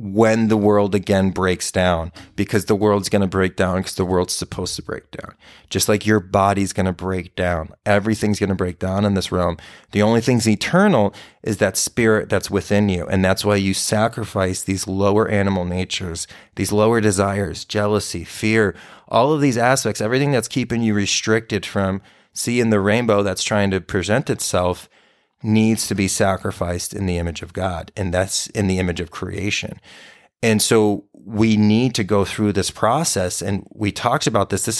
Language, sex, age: English, male, 30-49